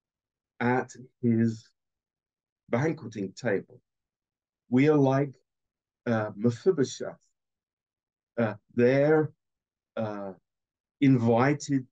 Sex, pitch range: male, 115-145 Hz